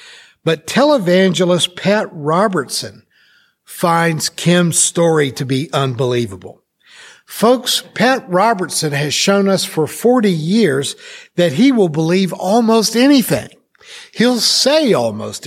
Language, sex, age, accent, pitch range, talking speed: English, male, 60-79, American, 155-215 Hz, 110 wpm